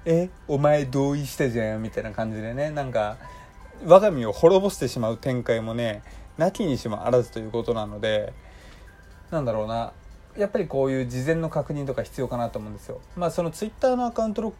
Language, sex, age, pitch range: Japanese, male, 20-39, 110-150 Hz